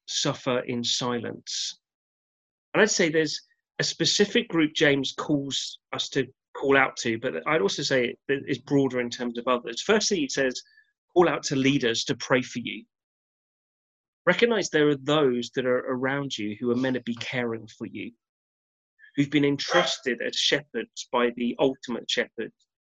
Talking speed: 165 wpm